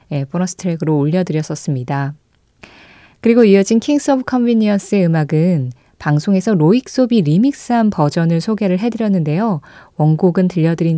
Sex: female